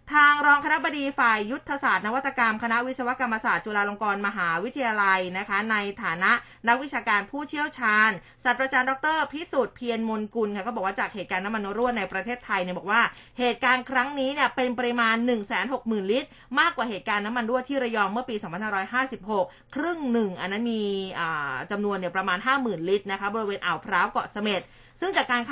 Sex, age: female, 20-39